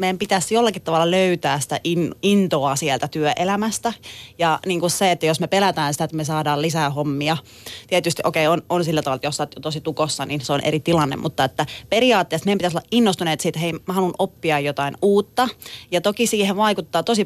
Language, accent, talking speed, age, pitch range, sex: Finnish, native, 215 wpm, 30-49, 160-210 Hz, female